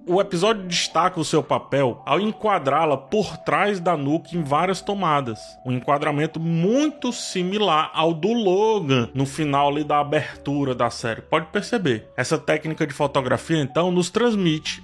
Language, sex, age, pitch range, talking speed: Portuguese, male, 20-39, 135-180 Hz, 150 wpm